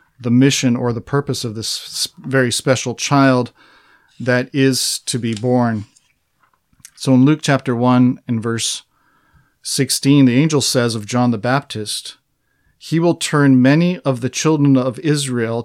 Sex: male